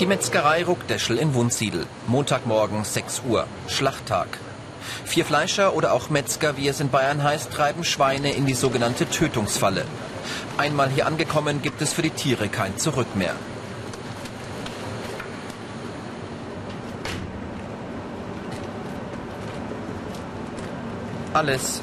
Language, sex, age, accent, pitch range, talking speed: German, male, 40-59, German, 125-155 Hz, 100 wpm